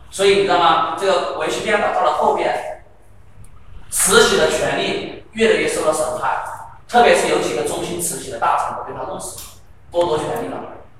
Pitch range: 155-215 Hz